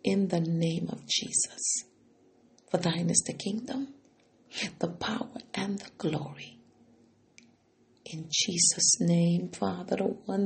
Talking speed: 120 wpm